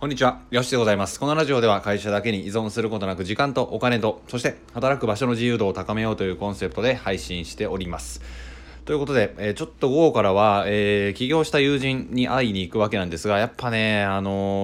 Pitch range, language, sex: 95-120 Hz, Japanese, male